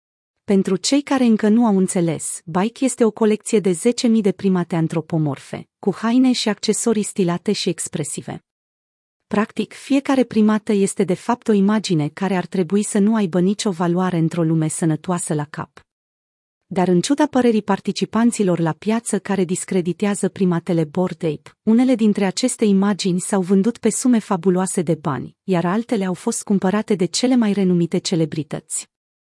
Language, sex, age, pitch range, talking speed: Romanian, female, 30-49, 175-220 Hz, 160 wpm